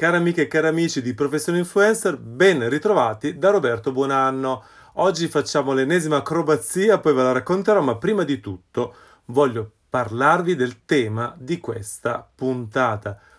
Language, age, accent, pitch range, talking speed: Italian, 30-49, native, 120-155 Hz, 145 wpm